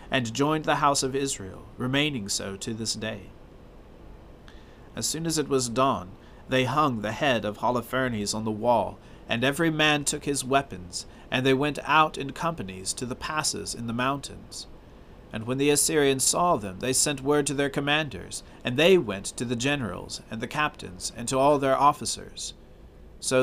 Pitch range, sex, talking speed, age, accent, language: 105-145 Hz, male, 180 wpm, 40-59, American, English